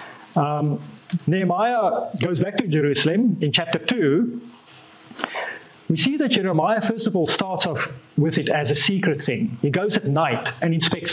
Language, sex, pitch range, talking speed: English, male, 160-215 Hz, 160 wpm